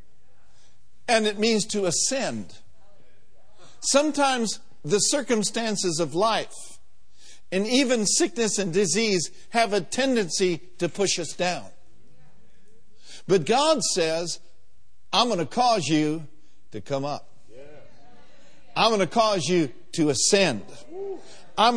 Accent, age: American, 60-79